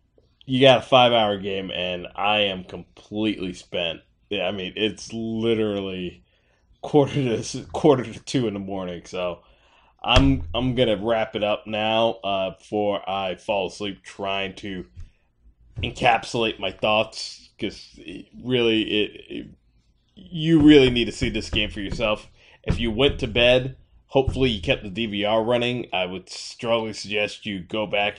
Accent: American